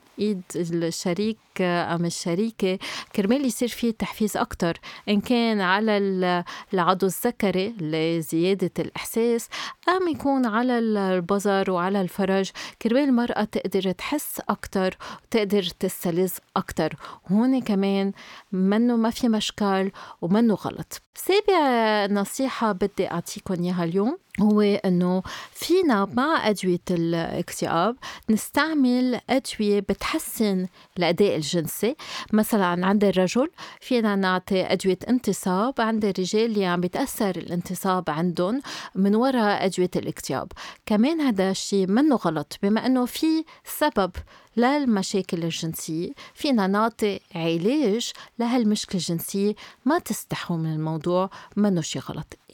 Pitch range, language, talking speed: 185-235 Hz, Arabic, 110 wpm